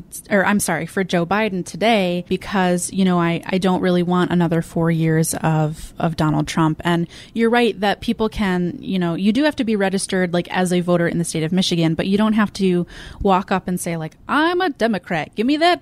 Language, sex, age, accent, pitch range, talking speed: English, female, 20-39, American, 170-210 Hz, 230 wpm